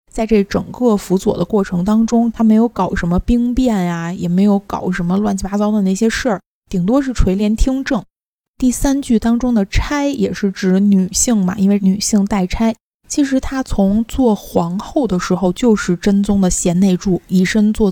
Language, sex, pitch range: Chinese, female, 180-220 Hz